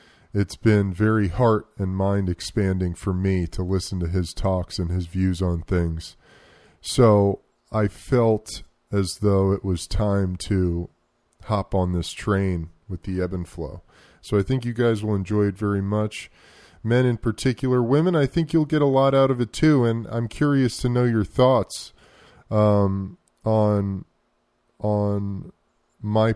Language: English